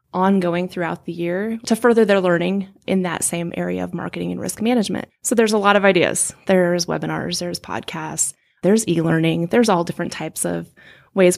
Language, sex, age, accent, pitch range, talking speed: English, female, 20-39, American, 175-210 Hz, 185 wpm